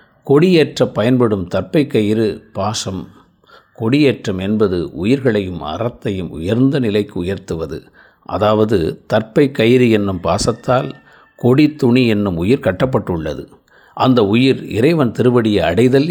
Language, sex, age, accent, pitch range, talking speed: Tamil, male, 50-69, native, 105-130 Hz, 100 wpm